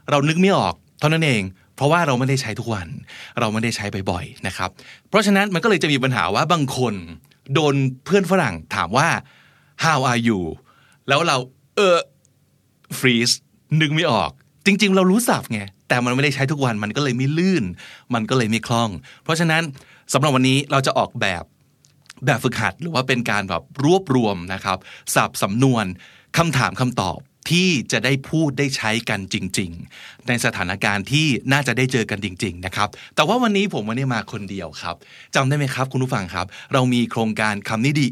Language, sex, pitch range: Thai, male, 110-145 Hz